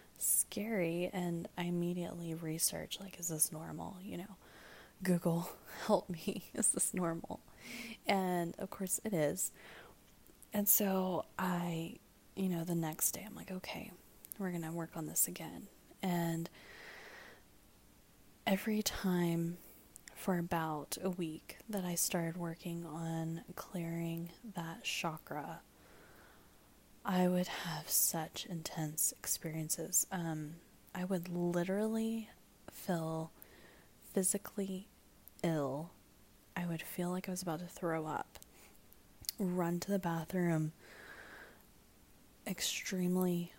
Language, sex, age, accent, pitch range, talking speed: English, female, 20-39, American, 165-185 Hz, 115 wpm